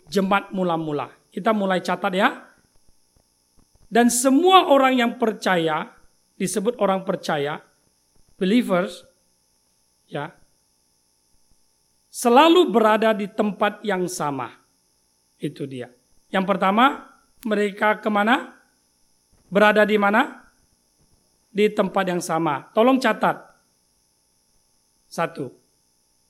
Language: Indonesian